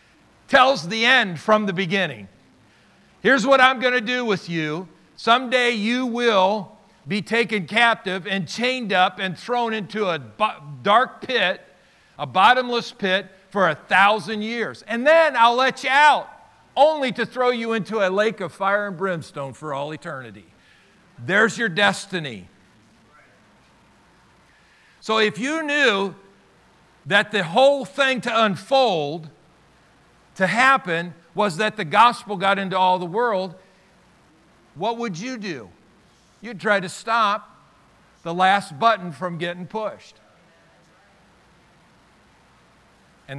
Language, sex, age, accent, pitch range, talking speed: English, male, 50-69, American, 160-230 Hz, 130 wpm